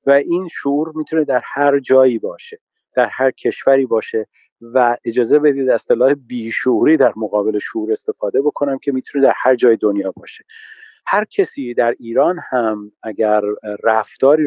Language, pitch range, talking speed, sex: Persian, 110-175 Hz, 150 wpm, male